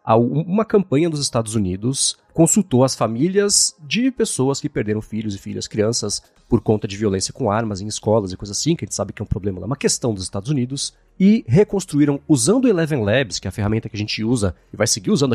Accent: Brazilian